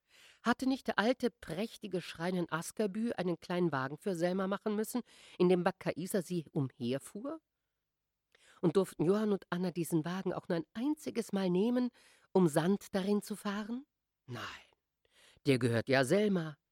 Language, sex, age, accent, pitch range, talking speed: German, female, 50-69, German, 130-210 Hz, 155 wpm